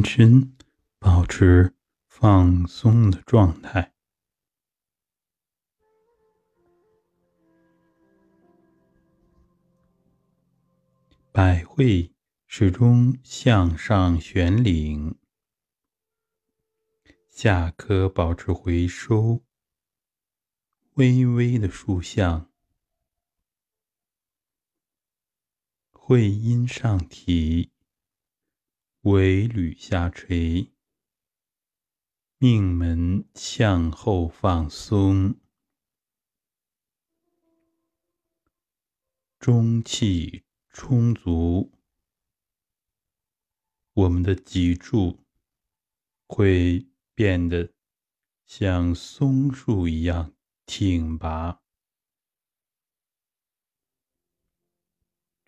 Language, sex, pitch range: Chinese, male, 85-125 Hz